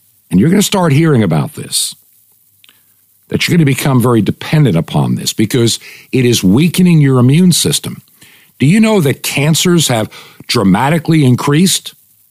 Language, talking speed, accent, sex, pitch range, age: English, 155 wpm, American, male, 115-165 Hz, 60-79